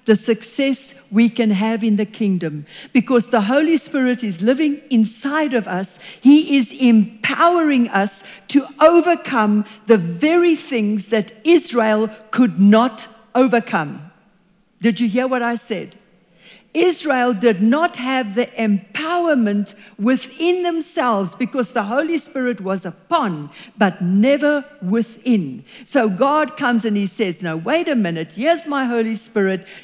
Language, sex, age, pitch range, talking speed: English, female, 60-79, 205-275 Hz, 135 wpm